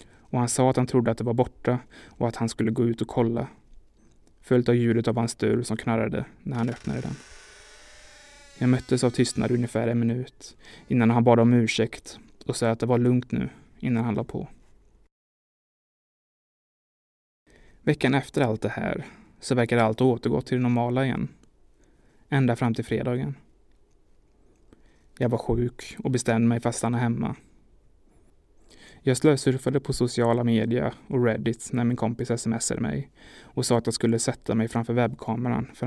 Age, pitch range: 20-39, 115-125 Hz